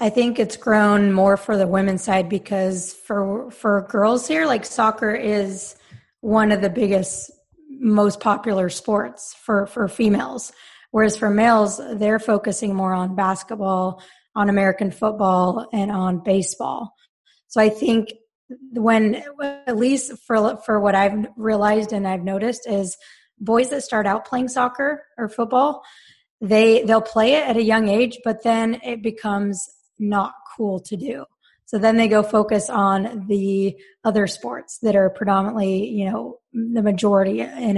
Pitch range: 195-230 Hz